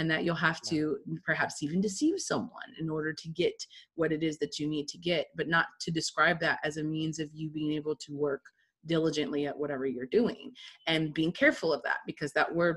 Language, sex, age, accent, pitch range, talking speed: English, female, 30-49, American, 155-200 Hz, 225 wpm